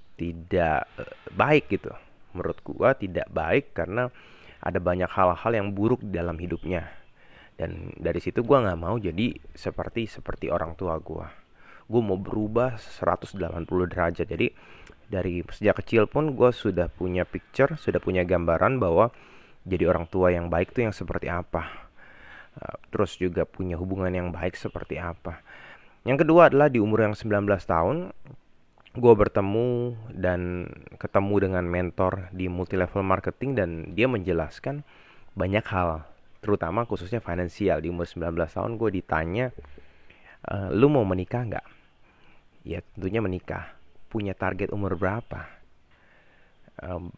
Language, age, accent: Indonesian, 30-49, native